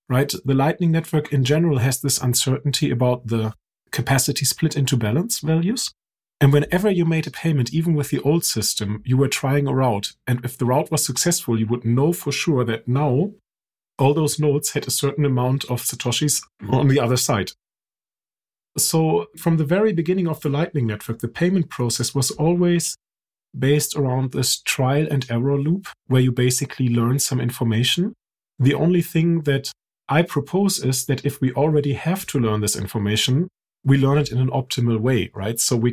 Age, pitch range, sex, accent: 40-59, 120-150 Hz, male, German